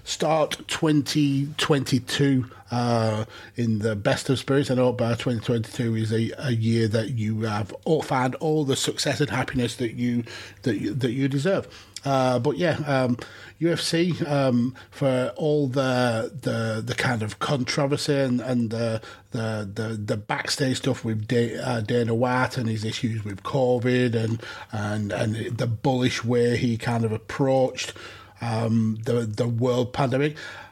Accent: British